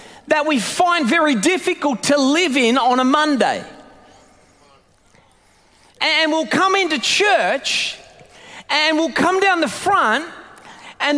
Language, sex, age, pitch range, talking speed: English, male, 40-59, 290-360 Hz, 125 wpm